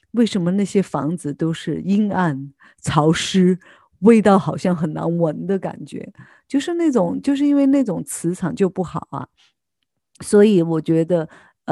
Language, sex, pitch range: Chinese, female, 165-215 Hz